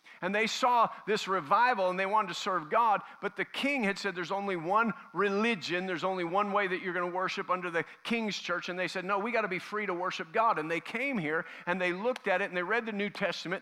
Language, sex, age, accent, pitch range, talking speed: English, male, 50-69, American, 185-240 Hz, 265 wpm